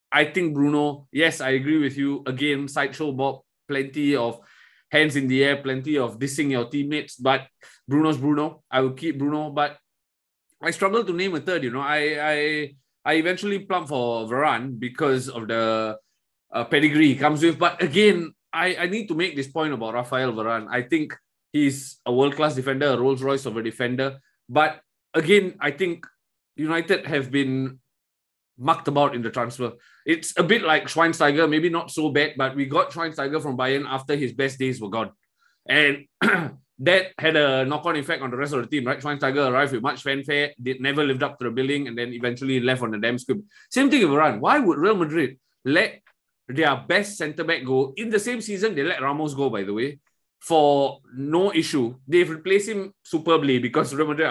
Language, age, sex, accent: English, 20-39, male, Malaysian